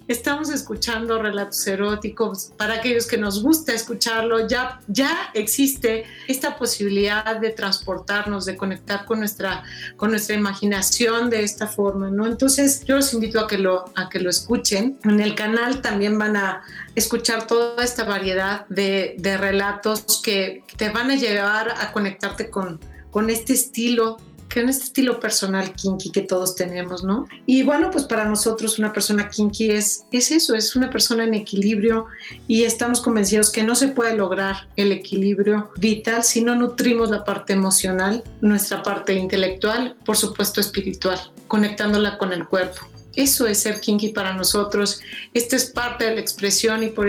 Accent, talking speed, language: Mexican, 160 wpm, Spanish